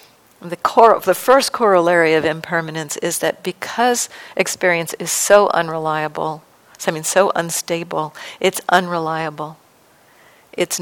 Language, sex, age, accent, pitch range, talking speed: English, female, 50-69, American, 170-230 Hz, 120 wpm